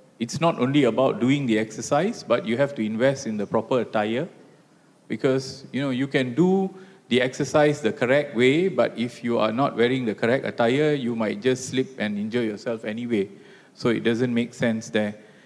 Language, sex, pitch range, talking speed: English, male, 115-150 Hz, 195 wpm